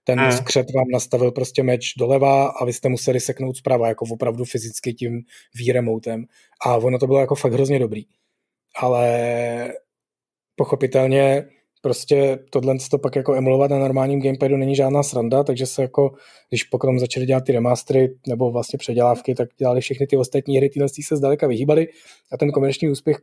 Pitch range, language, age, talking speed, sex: 120-135 Hz, Czech, 20-39, 170 wpm, male